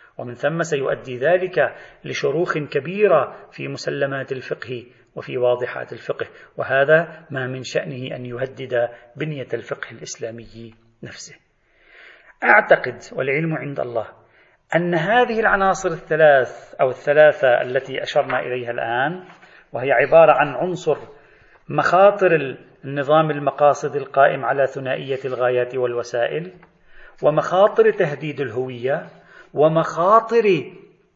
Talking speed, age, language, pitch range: 100 wpm, 40-59, Arabic, 125-160 Hz